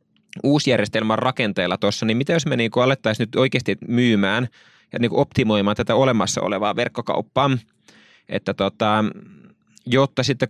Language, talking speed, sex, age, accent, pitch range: Finnish, 110 wpm, male, 20-39, native, 110-125 Hz